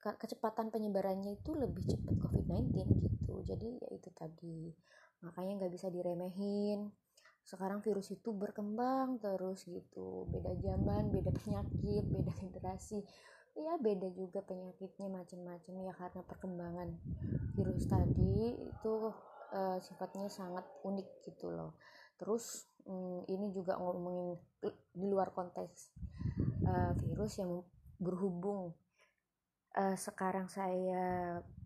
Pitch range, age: 175-195 Hz, 20-39